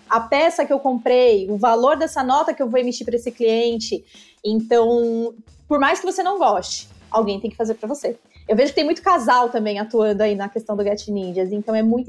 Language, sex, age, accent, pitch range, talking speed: Portuguese, female, 20-39, Brazilian, 235-325 Hz, 225 wpm